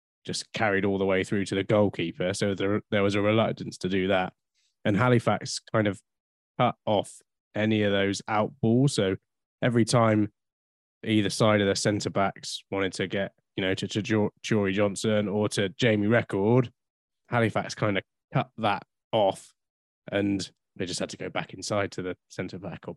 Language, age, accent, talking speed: English, 20-39, British, 180 wpm